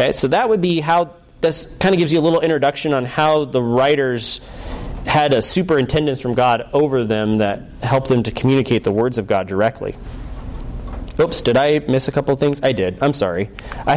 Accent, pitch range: American, 115-145 Hz